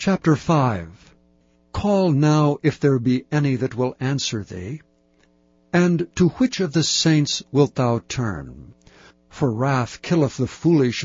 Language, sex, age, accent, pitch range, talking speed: English, male, 60-79, American, 110-150 Hz, 140 wpm